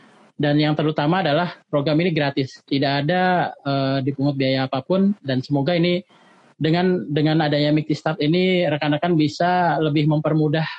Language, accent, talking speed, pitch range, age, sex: Indonesian, native, 140 wpm, 140-165 Hz, 30-49, male